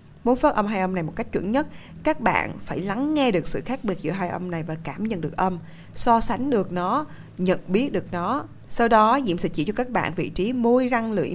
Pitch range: 165-220 Hz